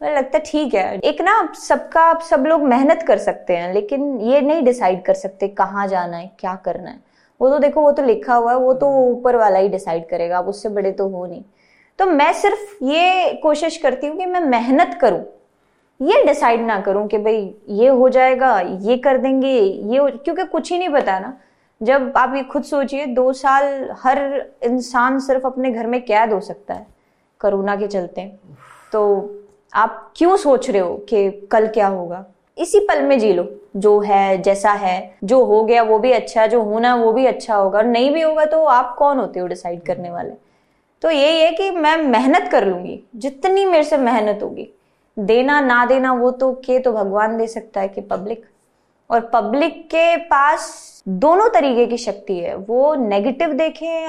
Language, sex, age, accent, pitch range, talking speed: Hindi, female, 20-39, native, 205-290 Hz, 195 wpm